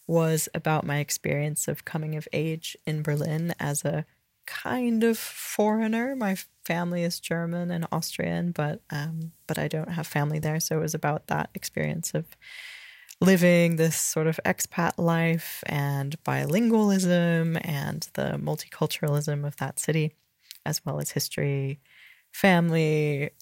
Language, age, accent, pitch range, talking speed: English, 20-39, American, 145-170 Hz, 140 wpm